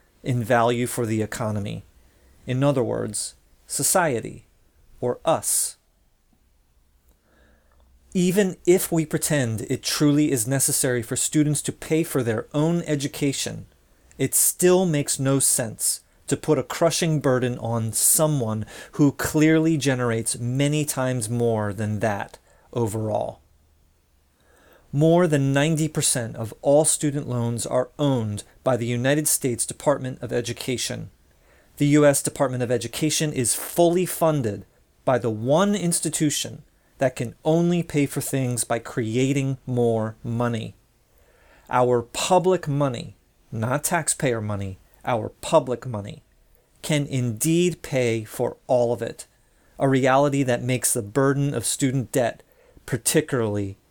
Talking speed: 125 wpm